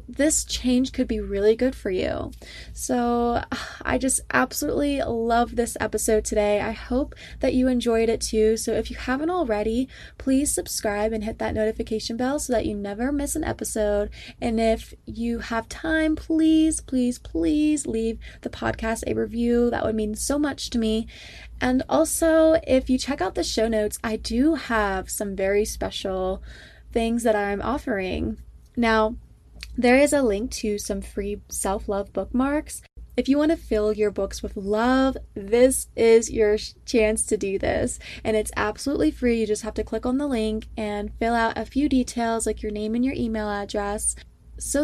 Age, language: 20-39, English